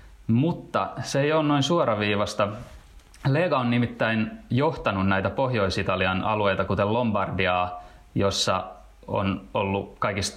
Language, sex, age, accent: Finnish, male, 20-39, native